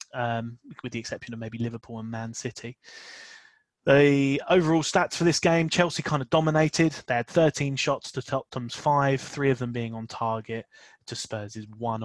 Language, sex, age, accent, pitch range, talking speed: English, male, 20-39, British, 115-160 Hz, 185 wpm